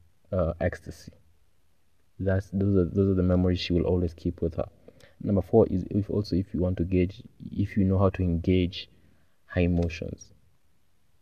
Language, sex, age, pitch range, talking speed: English, male, 20-39, 85-95 Hz, 175 wpm